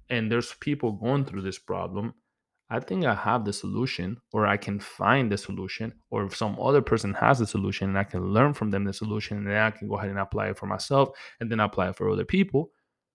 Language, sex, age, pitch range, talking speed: English, male, 20-39, 100-135 Hz, 240 wpm